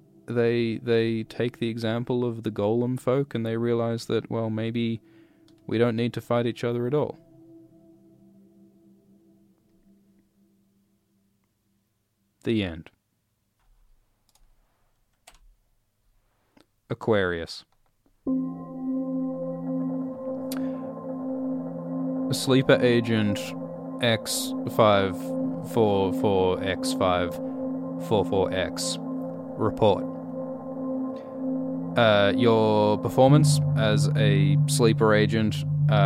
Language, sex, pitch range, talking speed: English, male, 90-130 Hz, 80 wpm